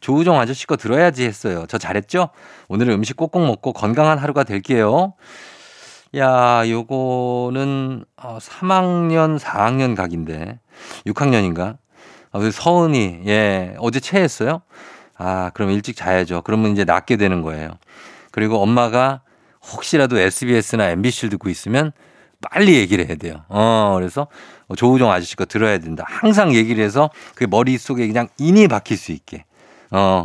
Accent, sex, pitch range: native, male, 100-145 Hz